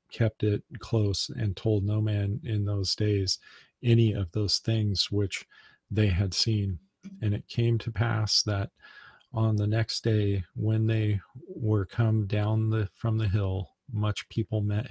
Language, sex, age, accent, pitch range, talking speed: English, male, 40-59, American, 100-110 Hz, 160 wpm